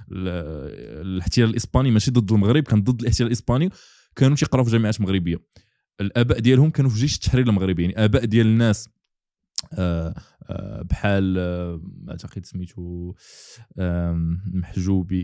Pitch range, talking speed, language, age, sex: 100-130 Hz, 120 wpm, Arabic, 20-39, male